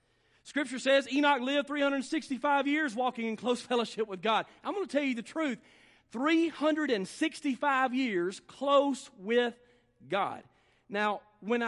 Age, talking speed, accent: 40-59, 135 wpm, American